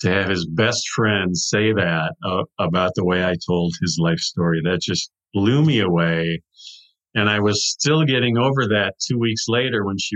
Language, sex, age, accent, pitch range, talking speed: English, male, 50-69, American, 100-125 Hz, 195 wpm